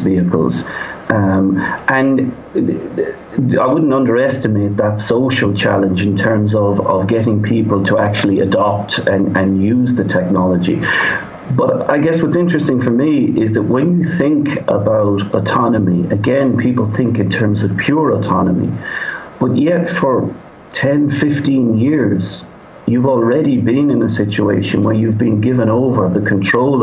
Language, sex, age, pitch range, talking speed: English, male, 40-59, 100-125 Hz, 145 wpm